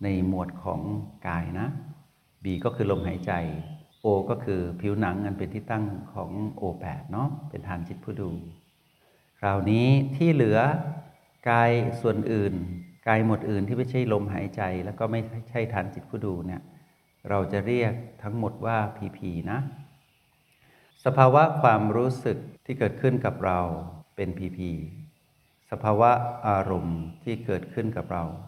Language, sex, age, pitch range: Thai, male, 60-79, 95-125 Hz